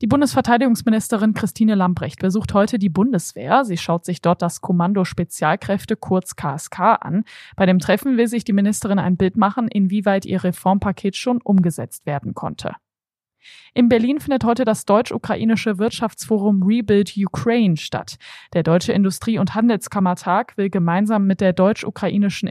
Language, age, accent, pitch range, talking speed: German, 20-39, German, 180-225 Hz, 145 wpm